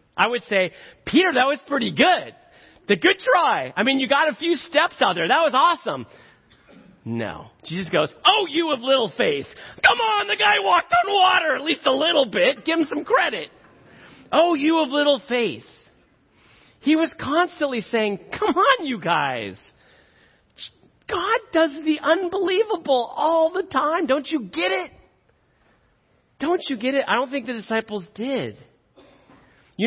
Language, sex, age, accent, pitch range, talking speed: English, male, 40-59, American, 205-305 Hz, 165 wpm